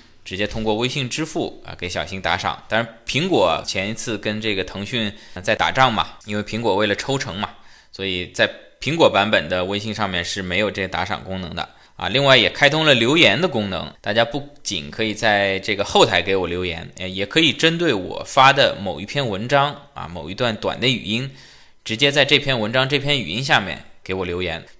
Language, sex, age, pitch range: Chinese, male, 20-39, 95-125 Hz